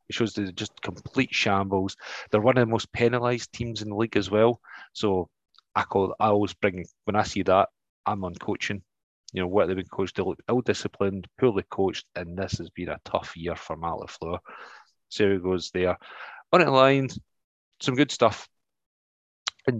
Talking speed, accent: 190 wpm, British